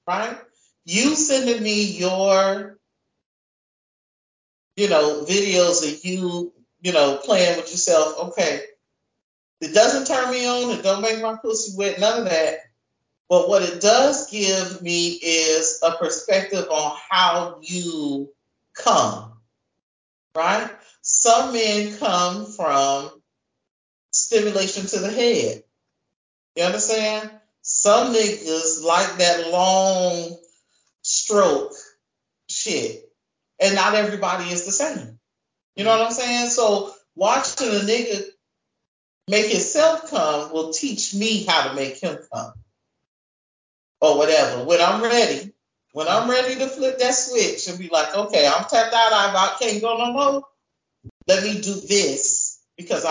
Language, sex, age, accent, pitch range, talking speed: English, male, 40-59, American, 165-225 Hz, 130 wpm